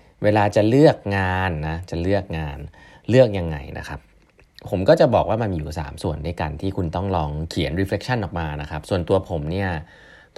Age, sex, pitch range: 30-49, male, 80-105 Hz